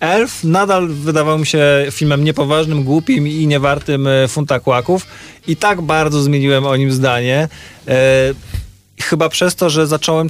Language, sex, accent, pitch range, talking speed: Polish, male, native, 120-145 Hz, 140 wpm